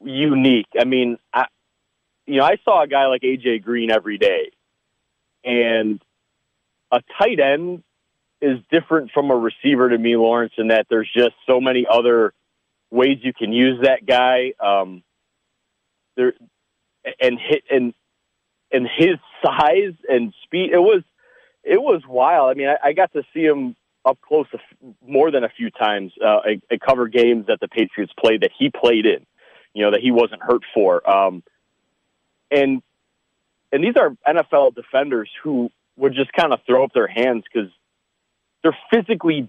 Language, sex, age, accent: English, male, 30-49, American